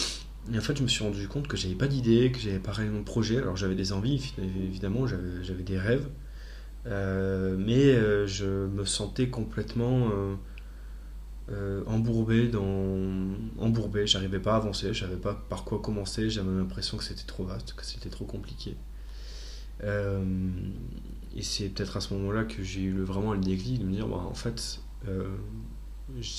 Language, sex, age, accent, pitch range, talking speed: French, male, 20-39, French, 95-110 Hz, 175 wpm